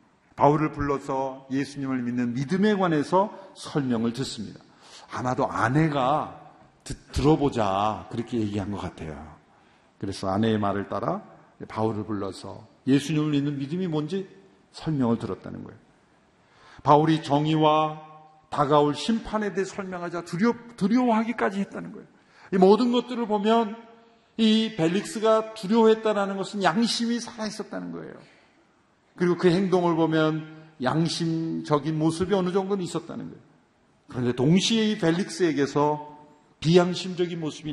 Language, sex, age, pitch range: Korean, male, 50-69, 120-180 Hz